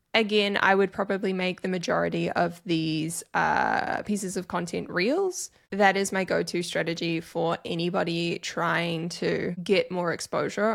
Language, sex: English, female